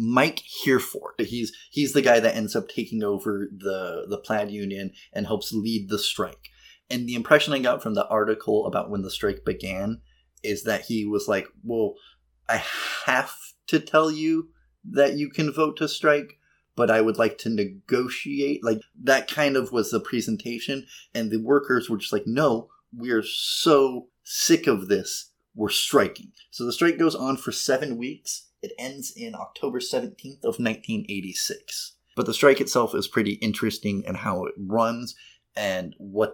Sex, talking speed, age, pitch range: male, 175 wpm, 30-49, 110-150 Hz